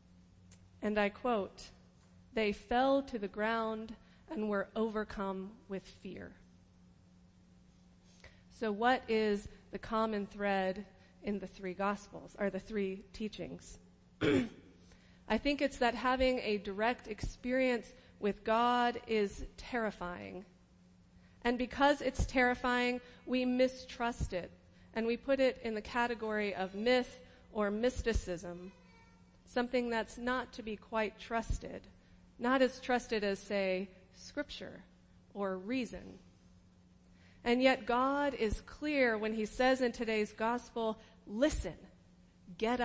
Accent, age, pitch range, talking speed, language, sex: American, 30-49, 170-245 Hz, 120 wpm, English, female